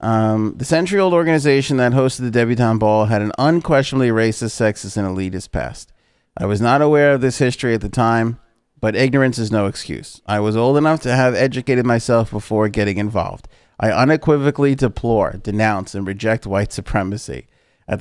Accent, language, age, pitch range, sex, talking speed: American, English, 30-49, 110-130 Hz, male, 175 wpm